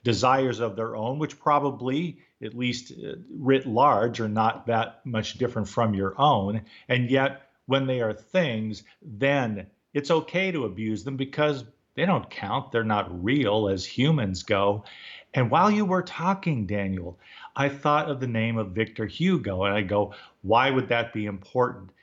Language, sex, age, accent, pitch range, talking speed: English, male, 50-69, American, 105-140 Hz, 170 wpm